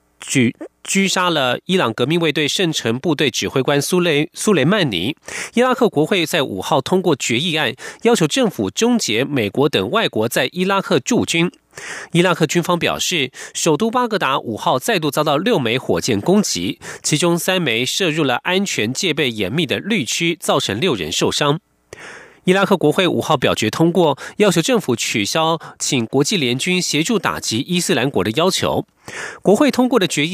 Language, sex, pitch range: German, male, 135-195 Hz